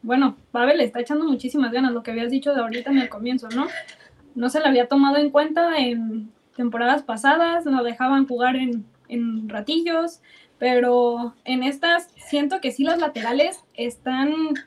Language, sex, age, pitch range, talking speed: Spanish, female, 20-39, 245-300 Hz, 170 wpm